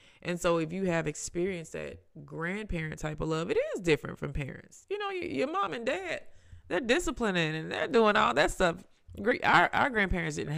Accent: American